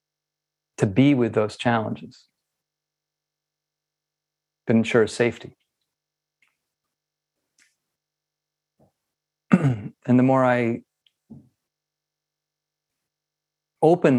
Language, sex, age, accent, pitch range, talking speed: English, male, 40-59, American, 115-155 Hz, 55 wpm